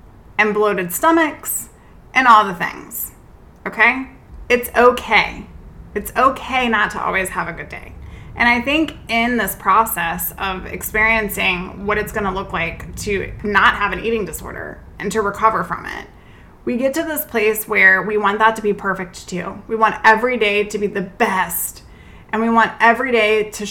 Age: 20-39